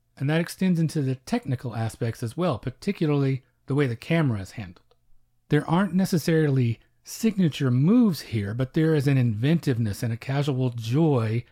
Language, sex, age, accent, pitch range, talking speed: English, male, 40-59, American, 120-150 Hz, 160 wpm